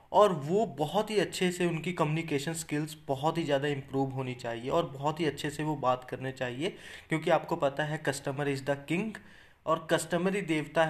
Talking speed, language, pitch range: 200 wpm, Hindi, 140-175 Hz